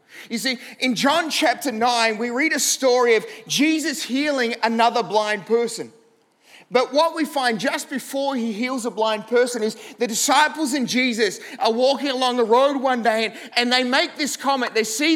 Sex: male